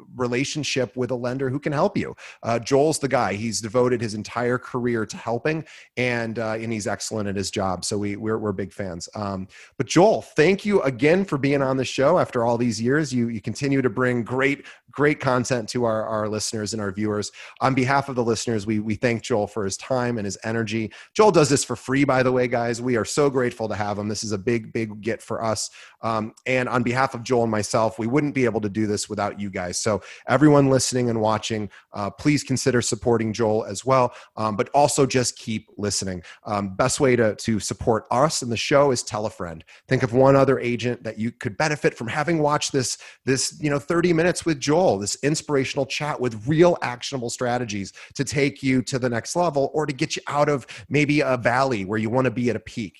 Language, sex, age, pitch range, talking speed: English, male, 30-49, 110-135 Hz, 230 wpm